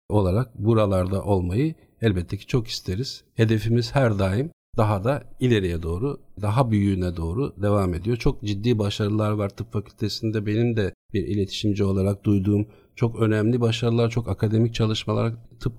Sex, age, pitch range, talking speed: male, 50-69, 100-120 Hz, 145 wpm